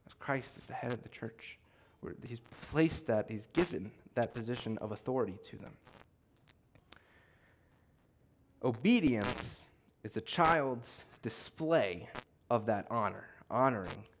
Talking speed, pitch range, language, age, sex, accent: 120 wpm, 115-150 Hz, English, 30-49, male, American